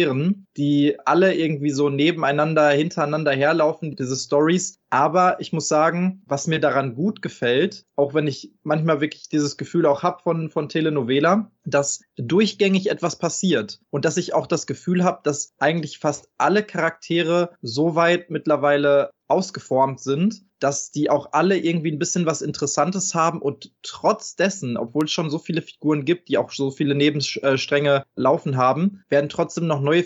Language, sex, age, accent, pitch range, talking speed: German, male, 20-39, German, 145-175 Hz, 165 wpm